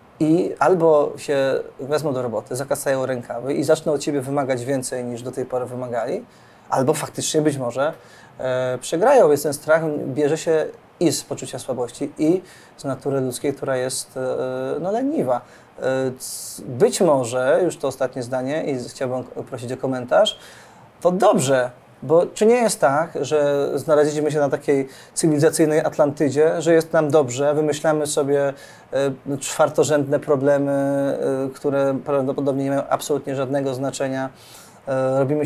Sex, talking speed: male, 135 wpm